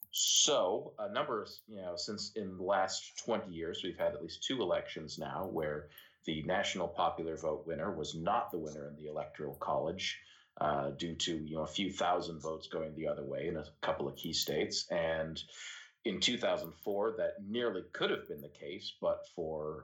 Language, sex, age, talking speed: English, male, 40-59, 195 wpm